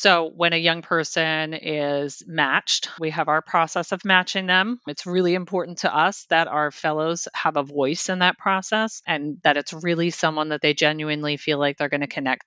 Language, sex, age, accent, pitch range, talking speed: English, female, 40-59, American, 150-175 Hz, 200 wpm